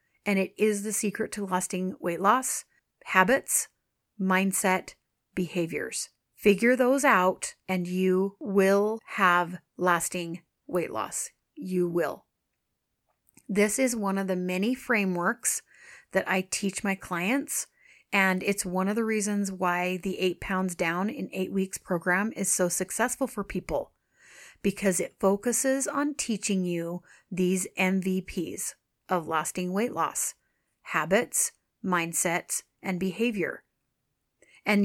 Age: 30-49